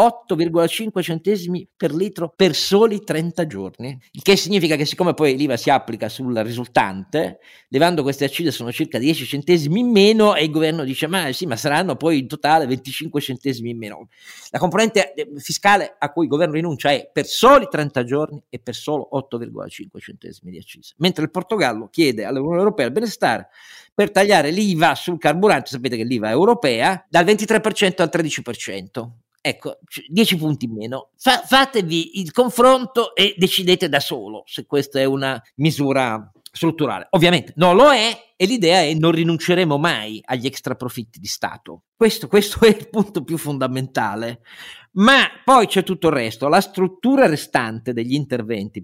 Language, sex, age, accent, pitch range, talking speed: Italian, male, 50-69, native, 135-190 Hz, 170 wpm